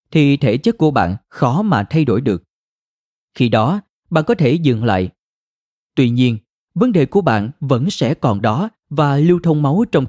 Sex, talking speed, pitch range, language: male, 190 wpm, 120-160 Hz, Vietnamese